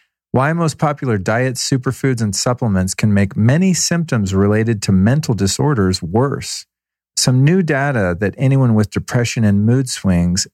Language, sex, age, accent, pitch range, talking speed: English, male, 40-59, American, 100-125 Hz, 150 wpm